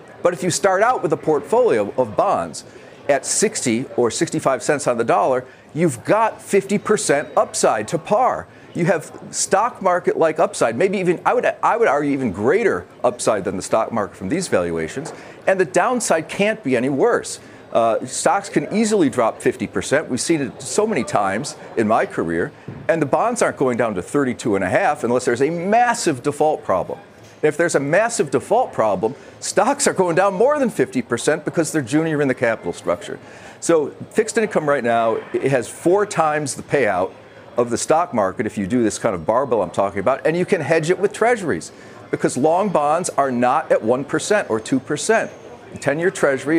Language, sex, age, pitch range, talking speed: English, male, 50-69, 145-205 Hz, 195 wpm